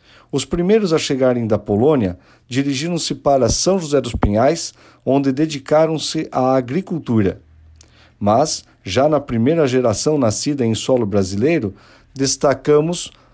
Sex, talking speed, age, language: male, 115 wpm, 50-69, Portuguese